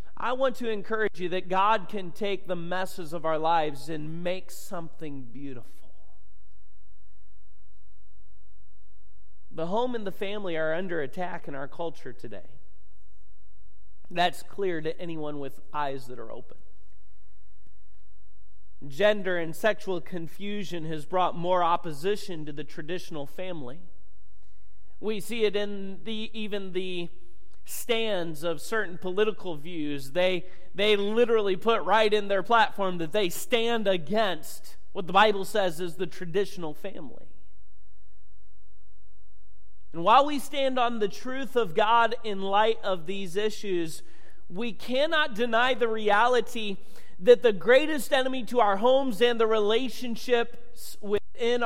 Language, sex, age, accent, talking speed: English, male, 40-59, American, 130 wpm